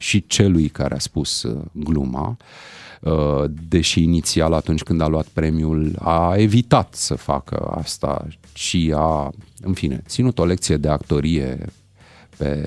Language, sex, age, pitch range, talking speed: Romanian, male, 30-49, 80-115 Hz, 135 wpm